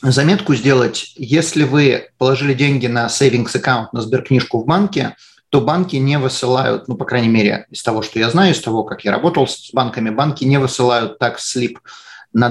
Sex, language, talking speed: male, Russian, 185 wpm